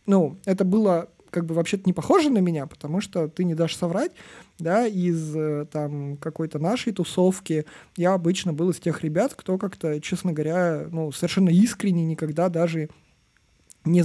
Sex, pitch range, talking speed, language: male, 160-200 Hz, 160 wpm, Russian